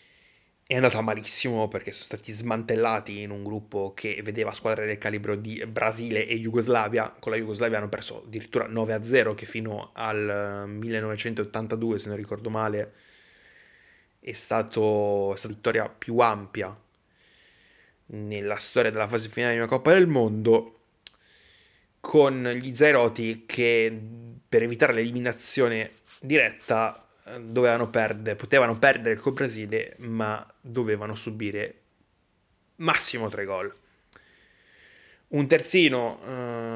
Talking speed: 120 wpm